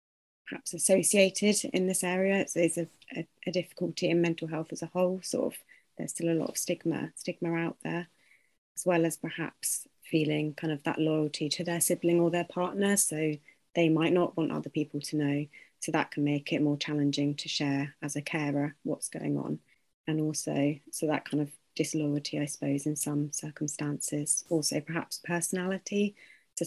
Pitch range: 150-175 Hz